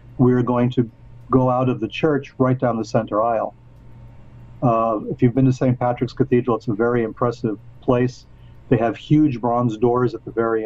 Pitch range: 120-135 Hz